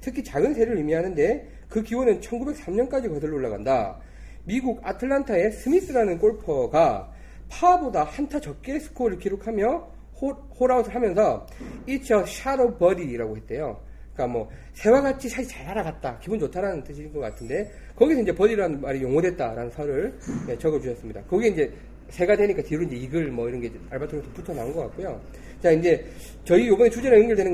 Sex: male